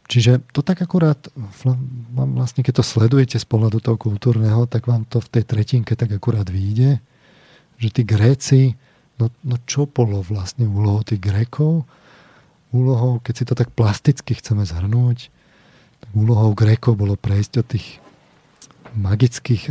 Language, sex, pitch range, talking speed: Slovak, male, 105-125 Hz, 145 wpm